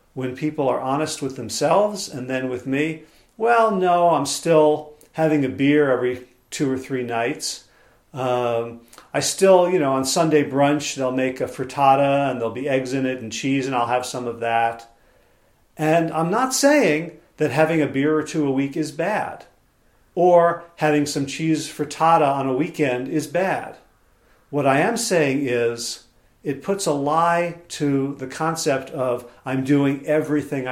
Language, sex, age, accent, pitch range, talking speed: English, male, 40-59, American, 130-165 Hz, 170 wpm